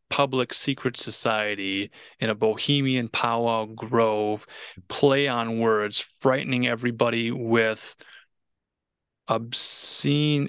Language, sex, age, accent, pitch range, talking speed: English, male, 30-49, American, 110-135 Hz, 85 wpm